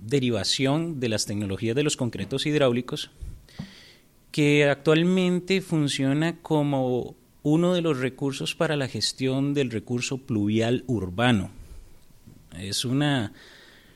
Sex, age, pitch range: male, 30-49, 115-145 Hz